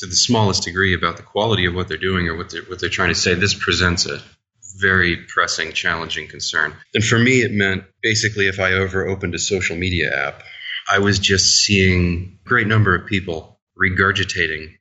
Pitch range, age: 90-105 Hz, 30-49